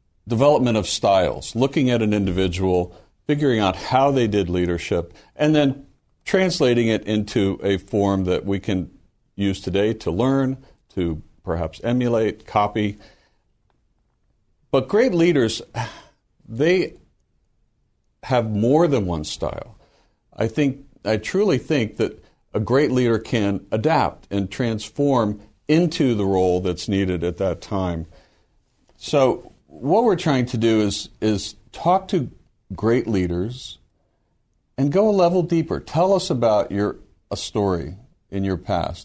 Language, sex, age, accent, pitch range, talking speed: English, male, 60-79, American, 95-125 Hz, 135 wpm